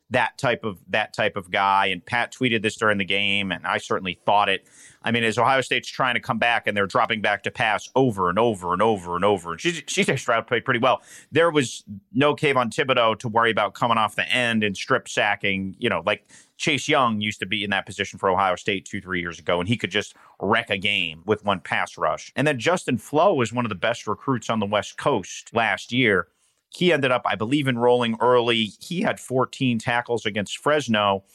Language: English